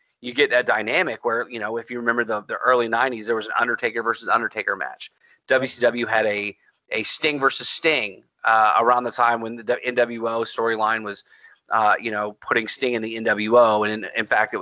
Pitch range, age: 115-155 Hz, 30-49